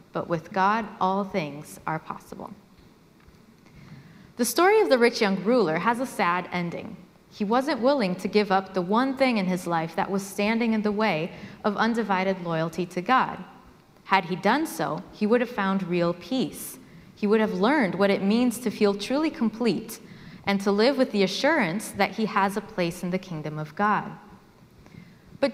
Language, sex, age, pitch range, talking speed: English, female, 30-49, 185-230 Hz, 185 wpm